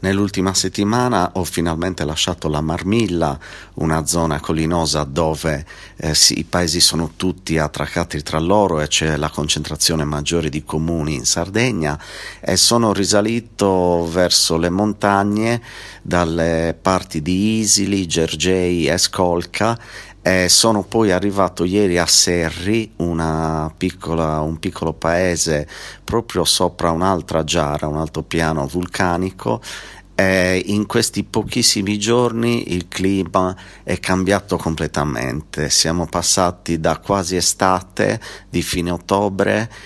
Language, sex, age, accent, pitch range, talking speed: Italian, male, 40-59, native, 80-95 Hz, 120 wpm